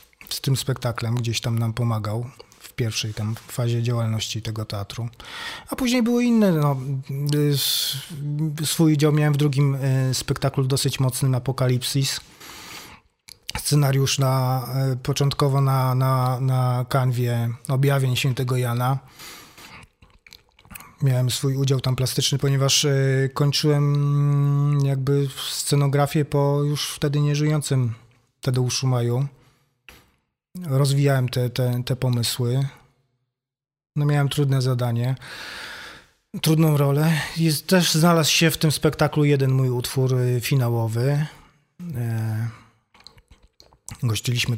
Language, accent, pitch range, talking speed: Polish, native, 120-145 Hz, 105 wpm